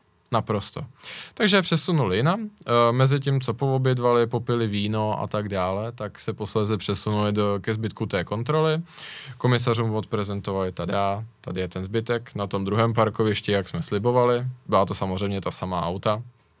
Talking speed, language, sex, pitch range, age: 155 wpm, Czech, male, 105-130 Hz, 20-39